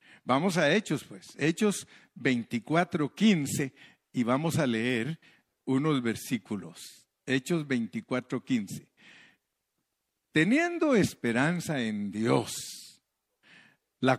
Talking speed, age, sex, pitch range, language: 90 wpm, 50-69, male, 115-150 Hz, Spanish